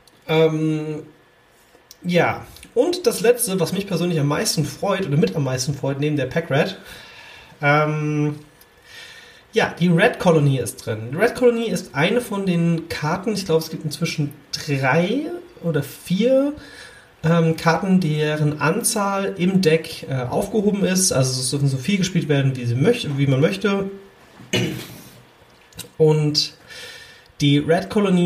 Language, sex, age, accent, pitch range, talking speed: German, male, 30-49, German, 135-180 Hz, 140 wpm